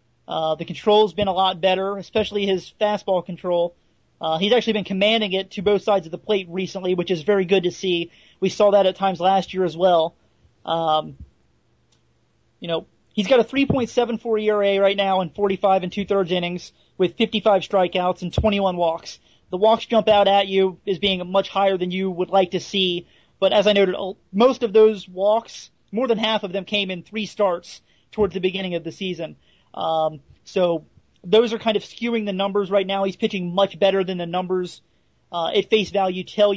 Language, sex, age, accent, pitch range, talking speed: English, male, 30-49, American, 180-205 Hz, 200 wpm